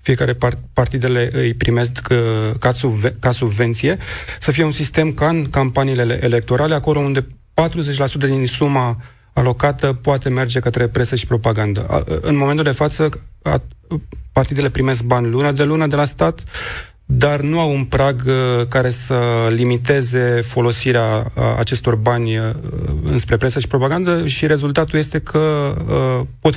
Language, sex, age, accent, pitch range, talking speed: Romanian, male, 30-49, native, 120-145 Hz, 135 wpm